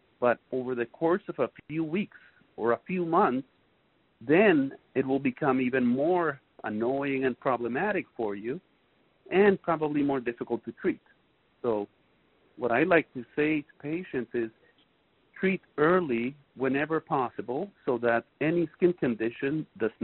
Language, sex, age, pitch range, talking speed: English, male, 50-69, 115-150 Hz, 145 wpm